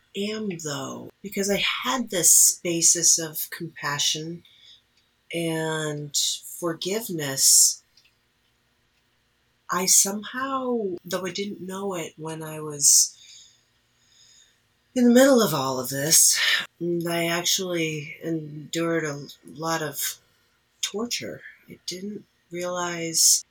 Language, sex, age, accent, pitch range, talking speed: English, female, 40-59, American, 140-180 Hz, 95 wpm